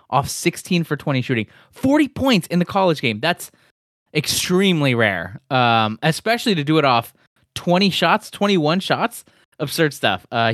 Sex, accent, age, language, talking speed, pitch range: male, American, 20-39, English, 155 wpm, 120-165 Hz